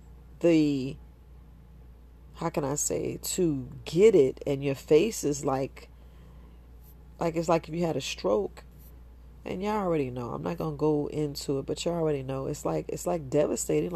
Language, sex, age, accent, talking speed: English, female, 40-59, American, 170 wpm